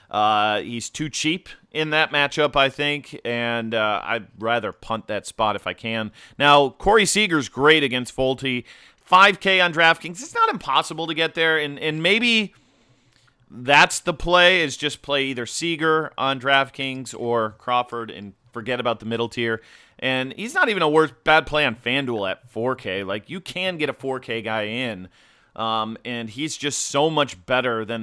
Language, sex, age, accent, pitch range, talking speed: English, male, 30-49, American, 110-145 Hz, 180 wpm